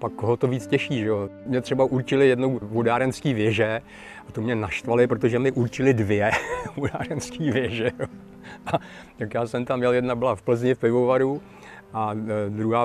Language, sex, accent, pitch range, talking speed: Czech, male, native, 115-130 Hz, 180 wpm